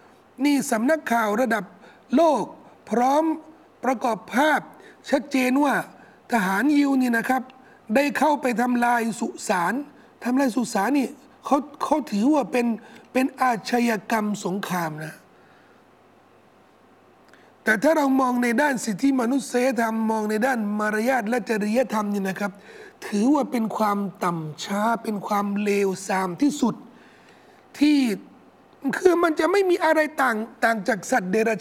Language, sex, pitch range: Thai, male, 220-290 Hz